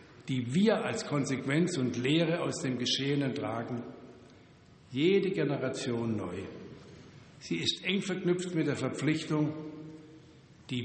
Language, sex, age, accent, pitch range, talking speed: German, male, 60-79, German, 125-150 Hz, 115 wpm